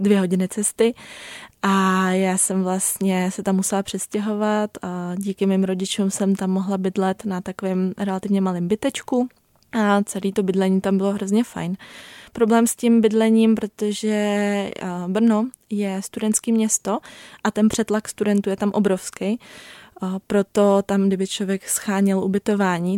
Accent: native